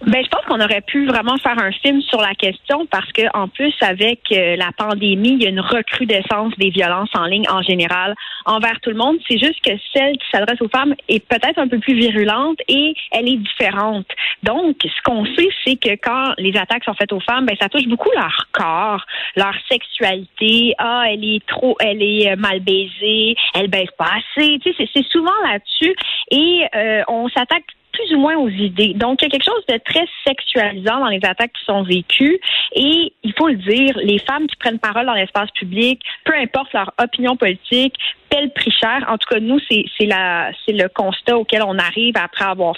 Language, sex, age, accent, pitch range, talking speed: French, female, 30-49, Canadian, 200-265 Hz, 215 wpm